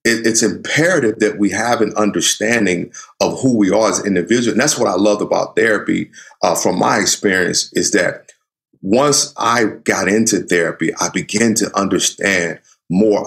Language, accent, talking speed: English, American, 165 wpm